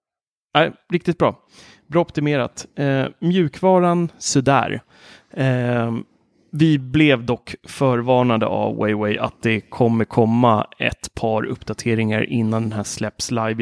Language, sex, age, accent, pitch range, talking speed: Swedish, male, 30-49, native, 110-130 Hz, 120 wpm